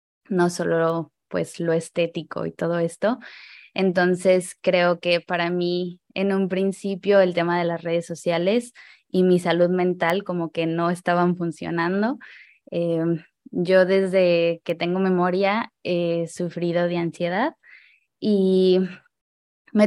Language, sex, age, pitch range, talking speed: Spanish, female, 20-39, 170-195 Hz, 135 wpm